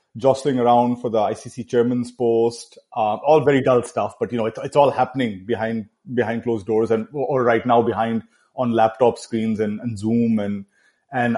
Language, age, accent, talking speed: English, 30-49, Indian, 180 wpm